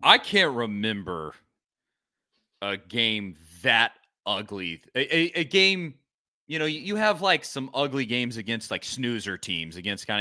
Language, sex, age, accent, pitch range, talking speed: English, male, 30-49, American, 105-150 Hz, 155 wpm